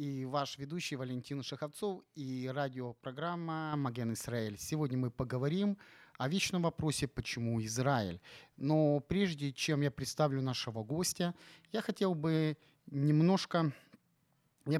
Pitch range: 120-160 Hz